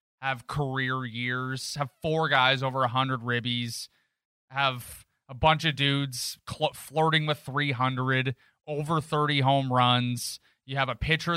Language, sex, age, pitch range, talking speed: English, male, 20-39, 120-160 Hz, 135 wpm